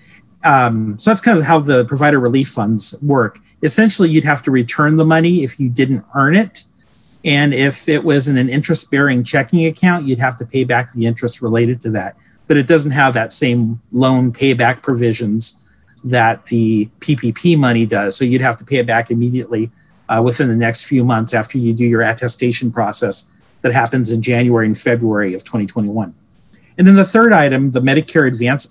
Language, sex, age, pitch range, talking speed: English, male, 40-59, 120-155 Hz, 190 wpm